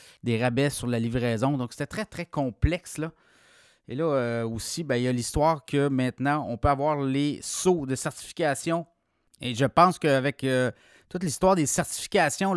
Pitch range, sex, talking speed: 130-170 Hz, male, 180 wpm